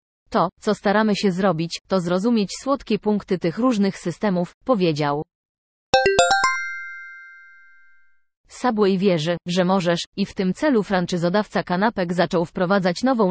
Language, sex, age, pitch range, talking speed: Polish, female, 30-49, 175-215 Hz, 115 wpm